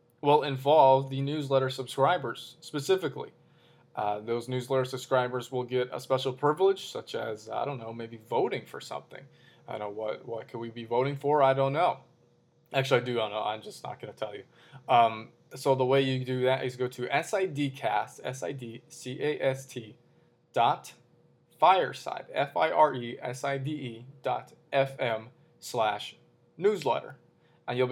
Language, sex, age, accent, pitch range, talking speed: English, male, 20-39, American, 120-135 Hz, 150 wpm